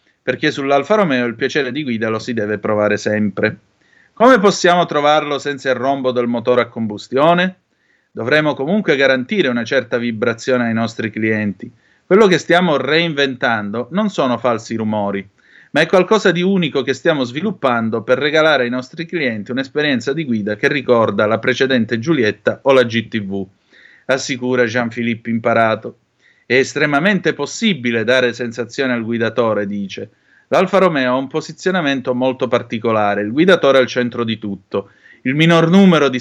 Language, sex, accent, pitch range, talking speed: Italian, male, native, 115-155 Hz, 150 wpm